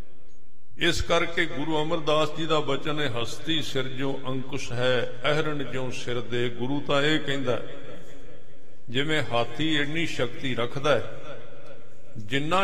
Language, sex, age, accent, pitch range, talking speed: English, male, 50-69, Indian, 125-160 Hz, 155 wpm